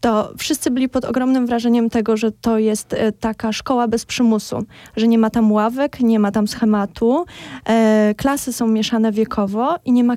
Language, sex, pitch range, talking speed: Polish, female, 220-255 Hz, 175 wpm